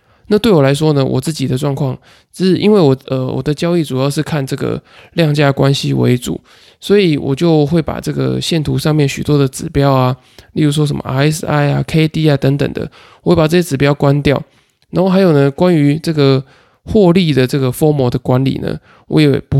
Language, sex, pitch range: Chinese, male, 135-160 Hz